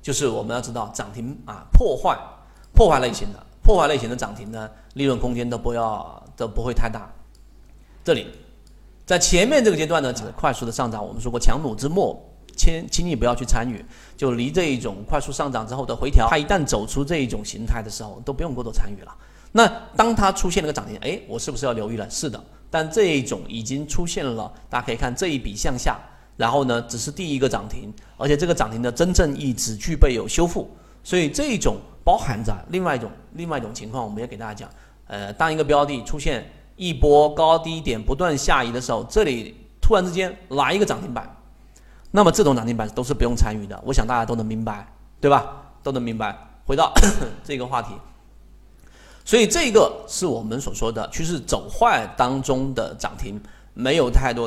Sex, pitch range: male, 115-160 Hz